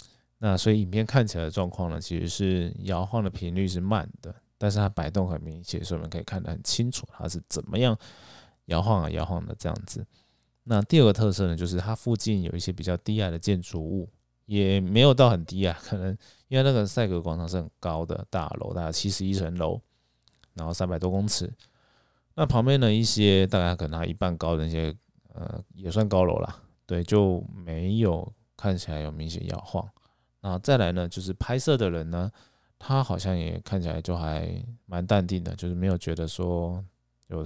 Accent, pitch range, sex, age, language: native, 85-110 Hz, male, 20-39, Chinese